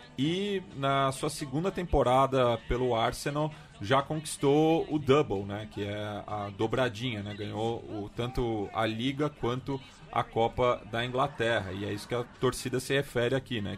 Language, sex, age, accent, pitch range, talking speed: Portuguese, male, 30-49, Brazilian, 110-140 Hz, 160 wpm